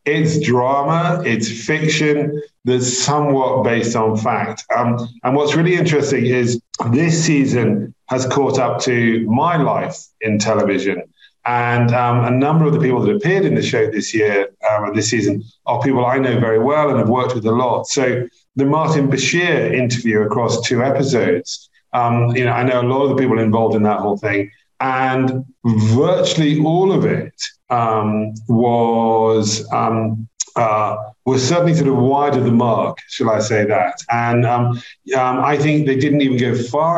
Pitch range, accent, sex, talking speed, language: 115-145 Hz, British, male, 175 wpm, English